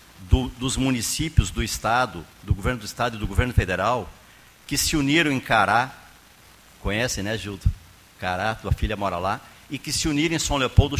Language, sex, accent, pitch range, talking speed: Portuguese, male, Brazilian, 105-140 Hz, 175 wpm